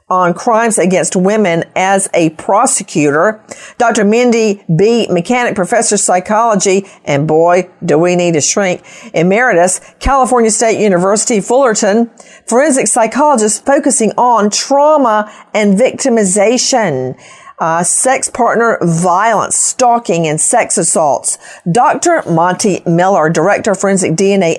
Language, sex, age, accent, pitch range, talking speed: English, female, 50-69, American, 175-240 Hz, 115 wpm